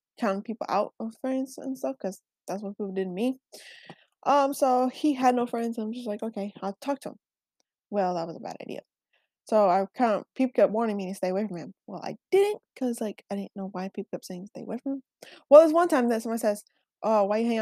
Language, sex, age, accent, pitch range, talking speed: English, female, 20-39, American, 205-270 Hz, 250 wpm